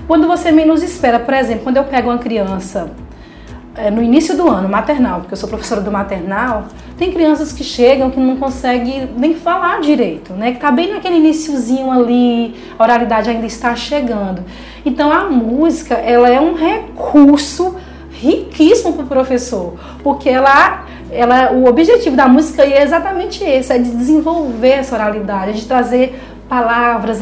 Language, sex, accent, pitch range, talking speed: Portuguese, female, Brazilian, 230-300 Hz, 160 wpm